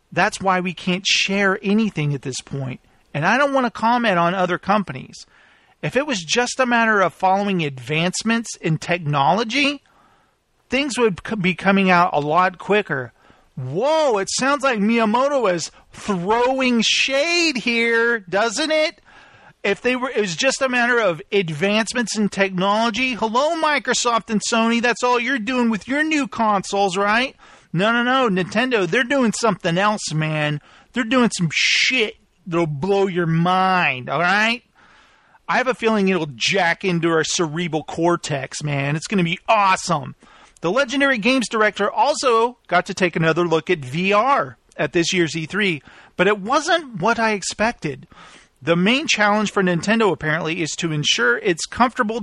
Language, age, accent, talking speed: English, 40-59, American, 160 wpm